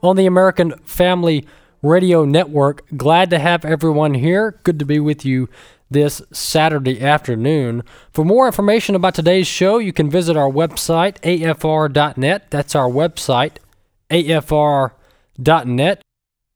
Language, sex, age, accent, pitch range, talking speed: English, male, 20-39, American, 140-175 Hz, 125 wpm